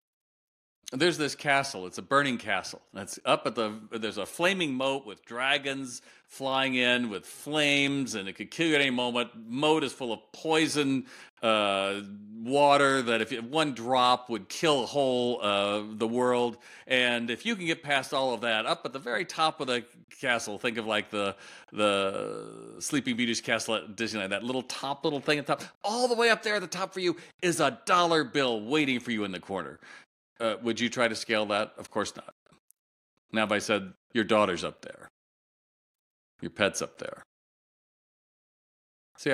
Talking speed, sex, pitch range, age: 195 wpm, male, 100-135 Hz, 40-59